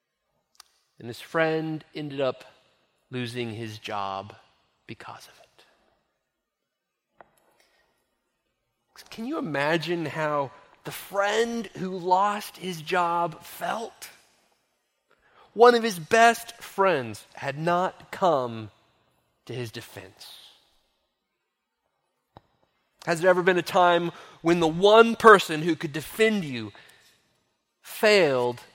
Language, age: English, 30-49